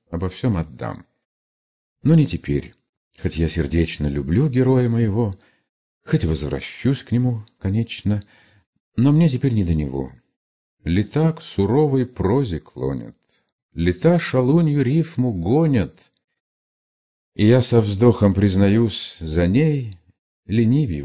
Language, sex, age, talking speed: Russian, male, 50-69, 115 wpm